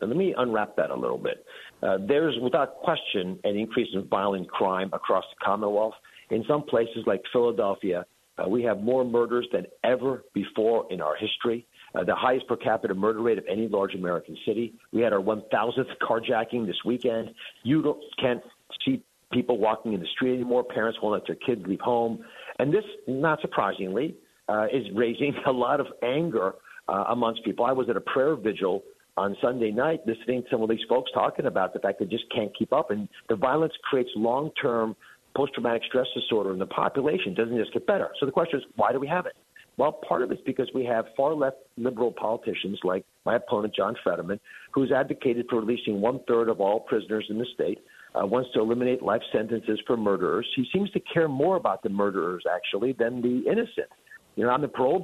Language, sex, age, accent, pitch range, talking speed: English, male, 50-69, American, 110-135 Hz, 200 wpm